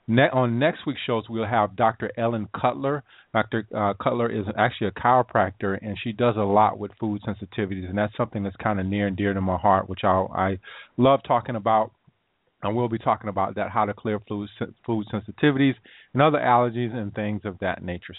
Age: 30-49